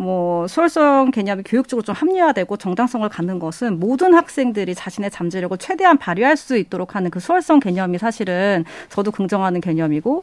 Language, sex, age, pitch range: Korean, female, 40-59, 190-290 Hz